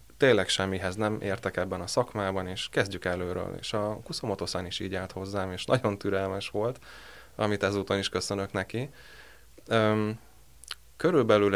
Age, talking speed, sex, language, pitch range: 20-39, 145 wpm, male, Hungarian, 90-105 Hz